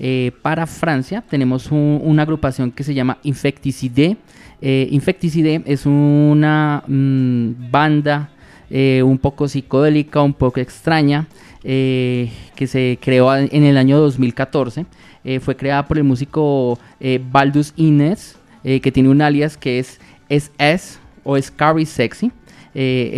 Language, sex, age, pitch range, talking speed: Spanish, male, 20-39, 130-150 Hz, 135 wpm